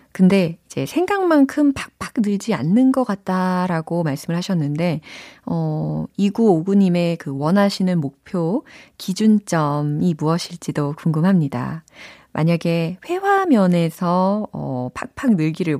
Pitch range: 155-230 Hz